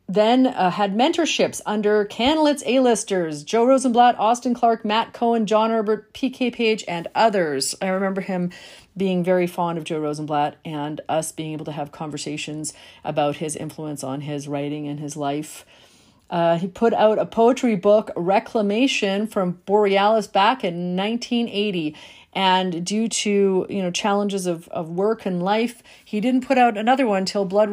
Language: English